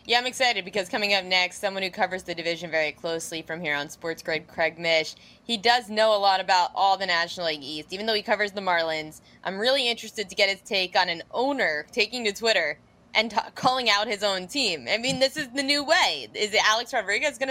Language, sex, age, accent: English, female, 20-39, American